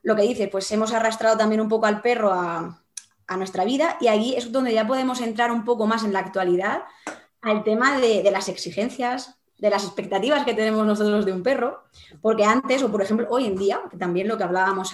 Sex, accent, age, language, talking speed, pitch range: female, Spanish, 20-39, Spanish, 225 wpm, 195-240 Hz